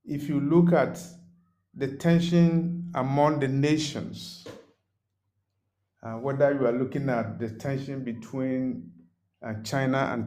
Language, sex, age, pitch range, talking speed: English, male, 50-69, 100-145 Hz, 125 wpm